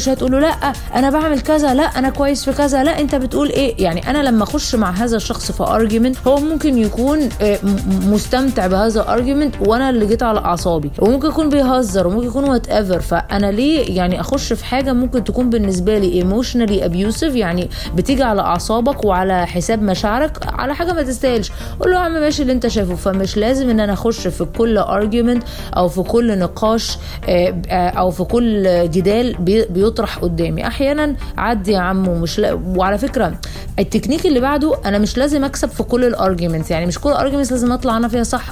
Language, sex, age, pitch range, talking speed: Arabic, female, 20-39, 195-265 Hz, 180 wpm